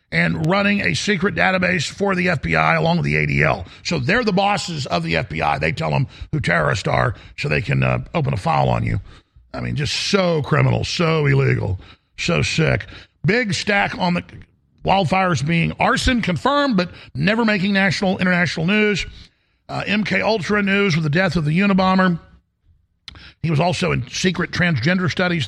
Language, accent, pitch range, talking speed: English, American, 135-190 Hz, 175 wpm